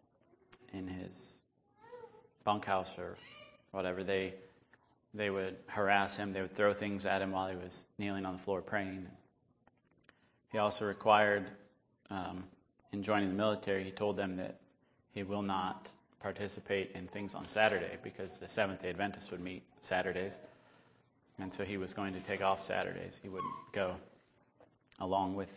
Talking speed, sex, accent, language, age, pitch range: 155 wpm, male, American, English, 30-49, 95-105 Hz